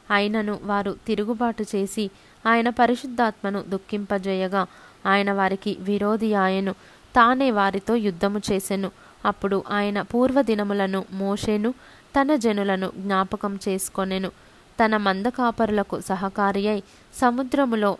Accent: native